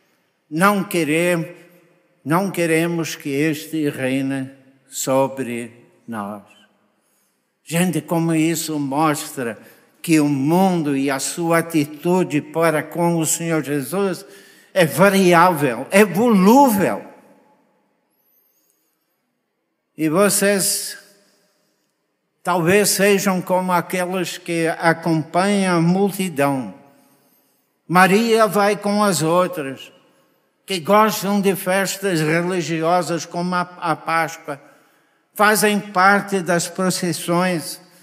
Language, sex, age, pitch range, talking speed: Portuguese, male, 60-79, 165-195 Hz, 90 wpm